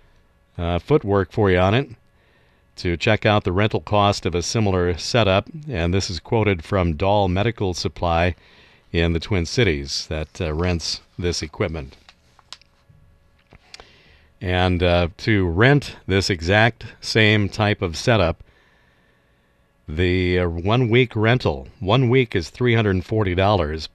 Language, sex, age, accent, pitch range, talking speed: English, male, 50-69, American, 85-105 Hz, 130 wpm